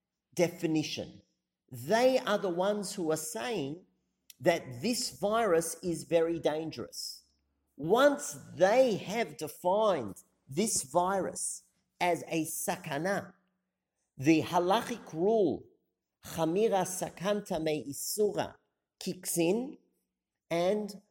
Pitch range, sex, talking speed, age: 135-190 Hz, male, 90 wpm, 50-69